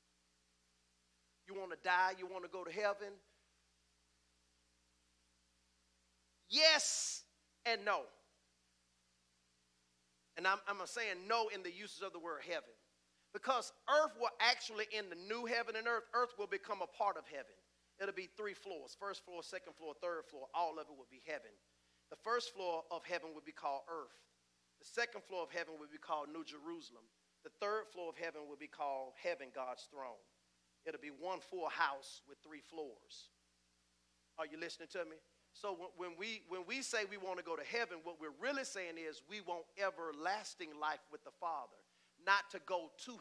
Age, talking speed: 40-59, 180 wpm